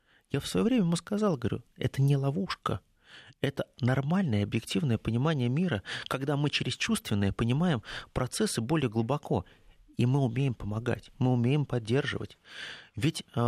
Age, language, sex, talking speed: 30-49, Russian, male, 140 wpm